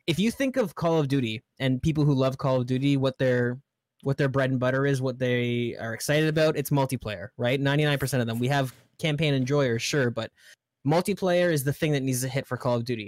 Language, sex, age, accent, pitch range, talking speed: English, male, 10-29, American, 125-150 Hz, 235 wpm